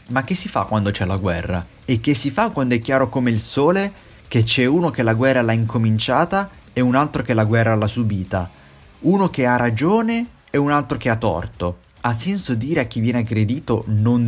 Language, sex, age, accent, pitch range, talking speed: Italian, male, 30-49, native, 110-140 Hz, 220 wpm